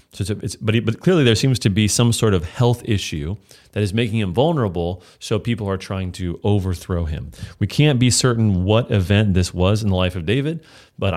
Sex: male